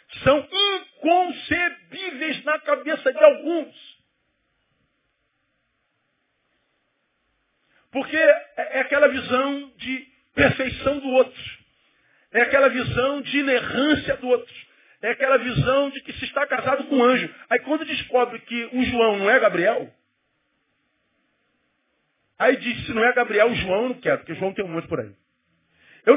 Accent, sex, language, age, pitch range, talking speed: Brazilian, male, Portuguese, 40-59, 235-295 Hz, 140 wpm